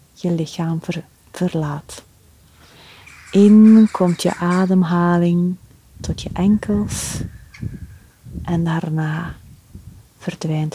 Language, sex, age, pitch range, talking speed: Dutch, female, 30-49, 165-210 Hz, 75 wpm